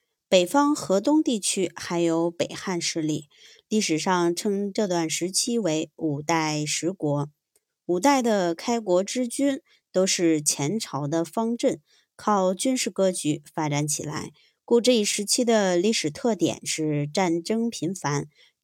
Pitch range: 160-225 Hz